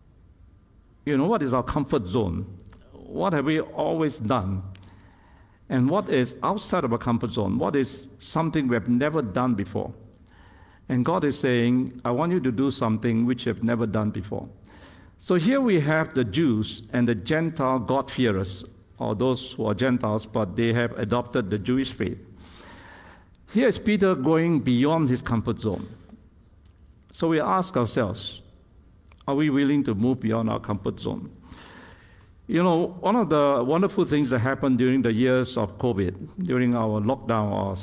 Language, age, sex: English, 60-79, male